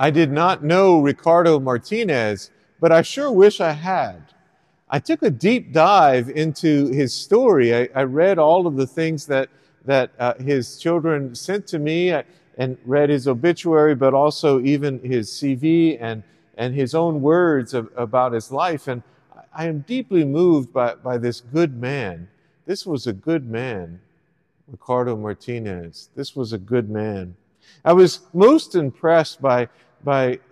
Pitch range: 120-160 Hz